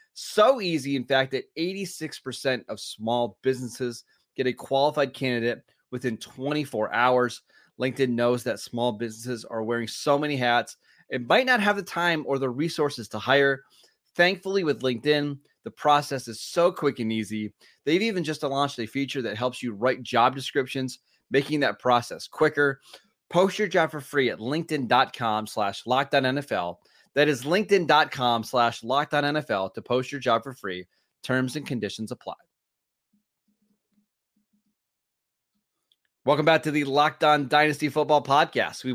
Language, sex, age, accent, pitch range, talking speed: English, male, 30-49, American, 125-155 Hz, 150 wpm